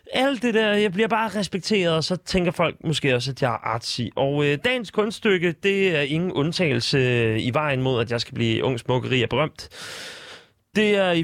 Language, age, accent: Danish, 30-49, native